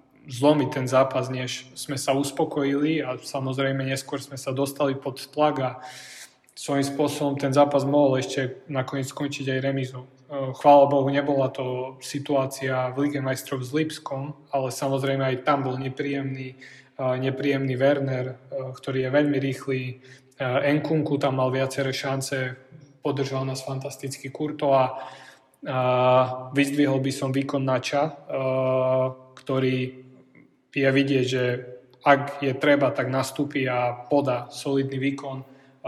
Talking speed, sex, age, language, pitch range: 130 wpm, male, 20-39, Slovak, 130-140 Hz